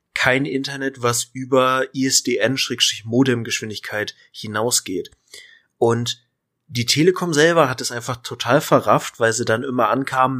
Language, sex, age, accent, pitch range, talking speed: German, male, 30-49, German, 120-145 Hz, 115 wpm